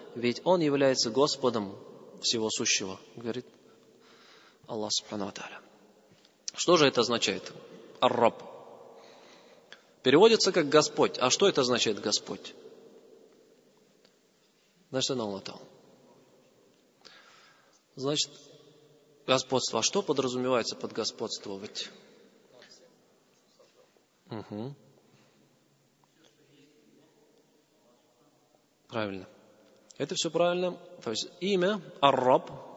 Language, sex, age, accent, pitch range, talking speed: Russian, male, 30-49, native, 130-195 Hz, 75 wpm